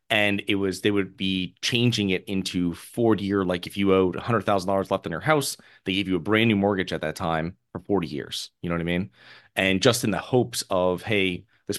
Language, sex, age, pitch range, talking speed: English, male, 30-49, 90-110 Hz, 230 wpm